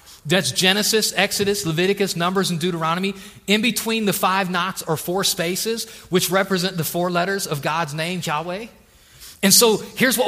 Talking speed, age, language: 165 wpm, 30-49, English